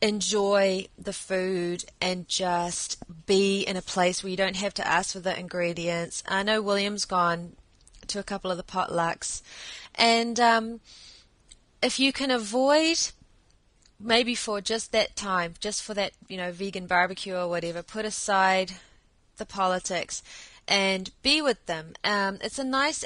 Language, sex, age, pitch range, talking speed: English, female, 20-39, 180-210 Hz, 155 wpm